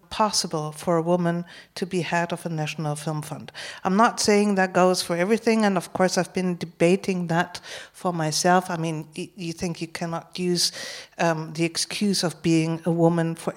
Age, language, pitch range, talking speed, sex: 60-79, English, 170-205 Hz, 190 wpm, female